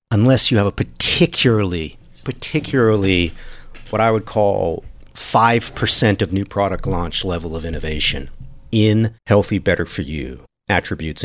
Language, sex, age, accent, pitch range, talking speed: English, male, 50-69, American, 85-110 Hz, 130 wpm